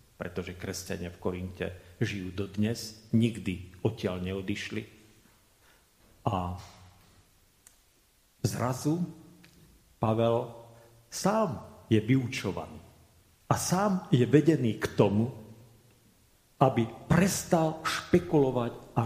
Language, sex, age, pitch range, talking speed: Slovak, male, 50-69, 110-145 Hz, 80 wpm